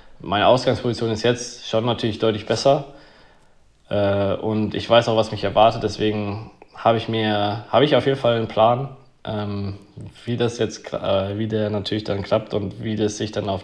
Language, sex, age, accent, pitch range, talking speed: German, male, 20-39, German, 100-115 Hz, 175 wpm